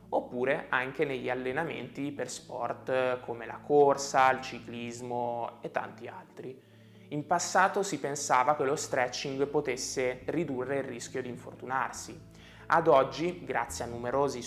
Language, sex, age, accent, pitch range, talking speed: Italian, male, 20-39, native, 120-150 Hz, 135 wpm